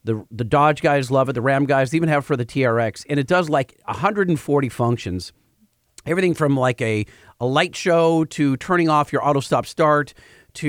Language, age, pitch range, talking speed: English, 40-59, 115-150 Hz, 195 wpm